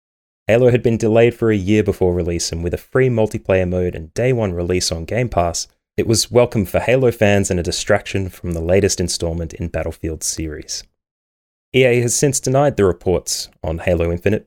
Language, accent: English, Australian